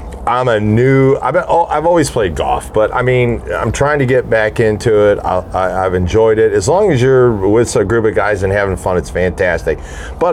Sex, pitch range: male, 95-120 Hz